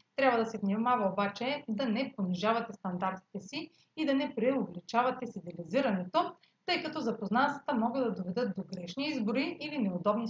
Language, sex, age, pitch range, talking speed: Bulgarian, female, 30-49, 195-265 Hz, 150 wpm